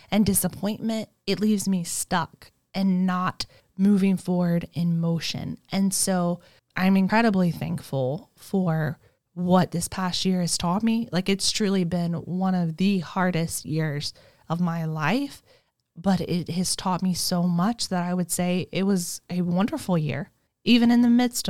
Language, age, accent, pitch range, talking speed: English, 20-39, American, 170-205 Hz, 160 wpm